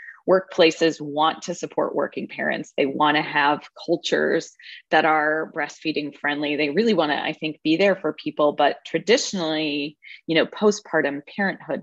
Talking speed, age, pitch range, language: 155 wpm, 20-39, 150-180 Hz, English